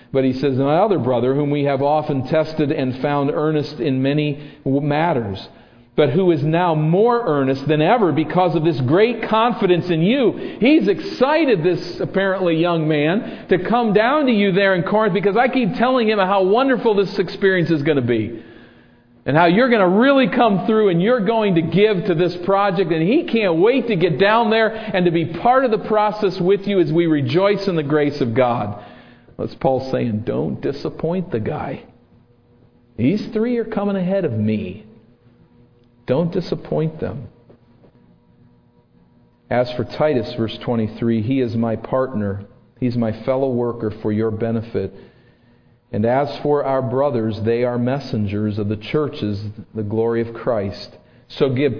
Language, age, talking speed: English, 50-69, 175 wpm